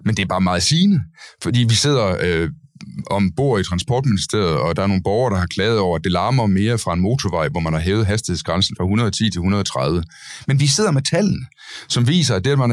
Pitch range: 95-135 Hz